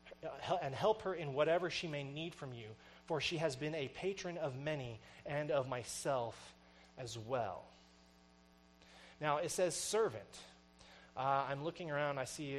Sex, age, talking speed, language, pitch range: male, 30-49, 155 wpm, English, 120-175 Hz